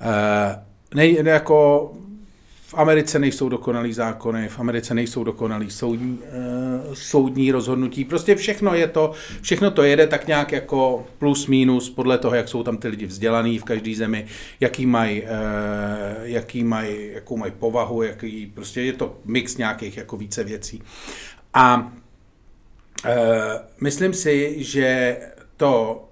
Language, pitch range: Czech, 105-125 Hz